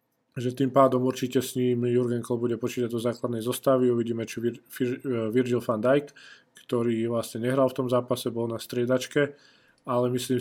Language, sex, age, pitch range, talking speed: Slovak, male, 20-39, 115-125 Hz, 180 wpm